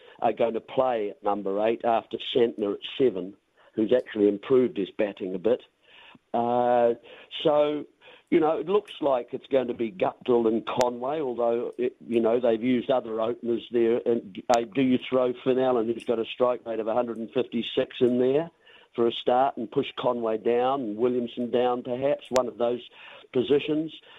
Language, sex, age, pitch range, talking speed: English, male, 50-69, 115-135 Hz, 180 wpm